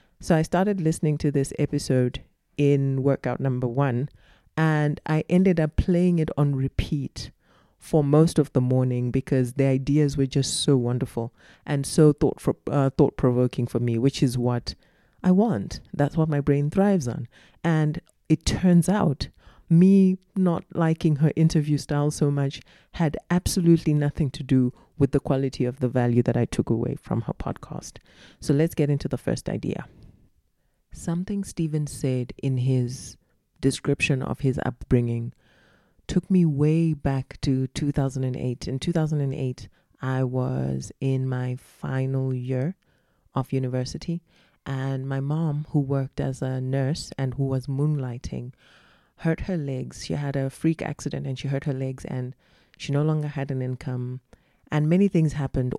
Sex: female